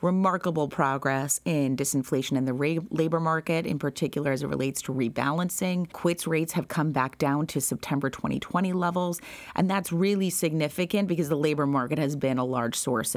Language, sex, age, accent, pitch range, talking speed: English, female, 30-49, American, 135-170 Hz, 175 wpm